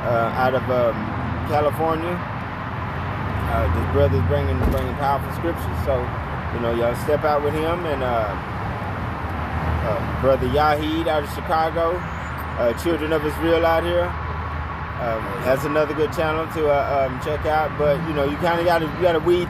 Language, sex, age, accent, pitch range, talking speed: English, male, 20-39, American, 100-145 Hz, 170 wpm